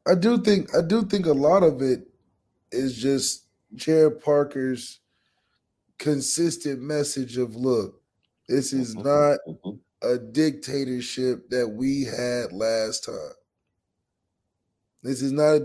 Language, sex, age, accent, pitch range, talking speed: English, male, 20-39, American, 120-145 Hz, 125 wpm